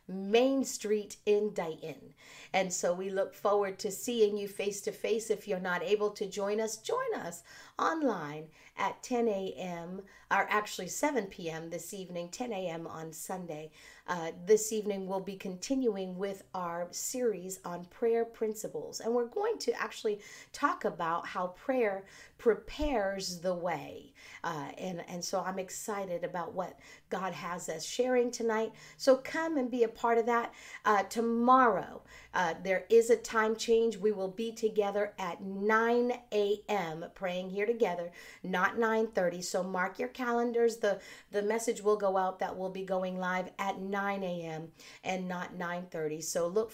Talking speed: 165 wpm